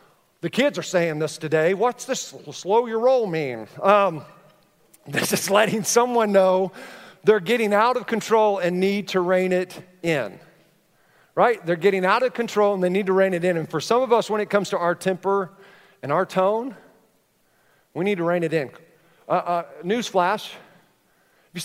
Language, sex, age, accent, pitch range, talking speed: English, male, 40-59, American, 165-205 Hz, 185 wpm